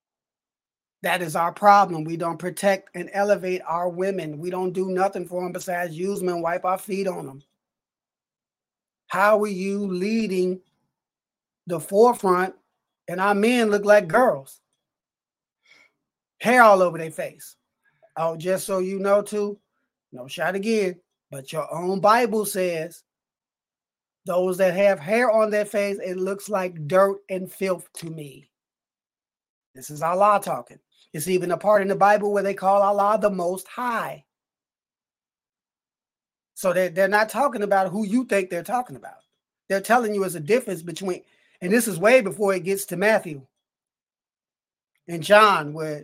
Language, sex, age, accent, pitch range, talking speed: English, male, 30-49, American, 175-205 Hz, 160 wpm